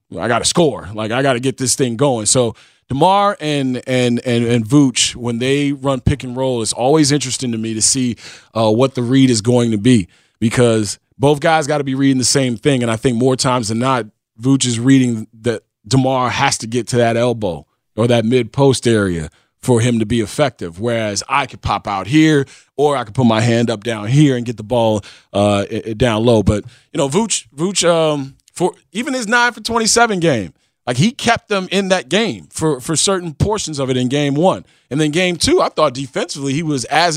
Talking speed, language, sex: 225 wpm, English, male